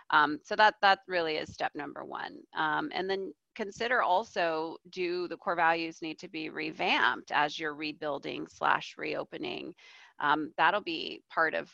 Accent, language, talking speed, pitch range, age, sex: American, English, 165 wpm, 155-195 Hz, 30-49, female